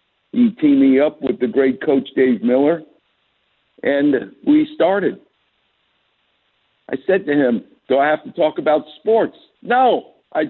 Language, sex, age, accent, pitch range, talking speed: English, male, 50-69, American, 140-235 Hz, 150 wpm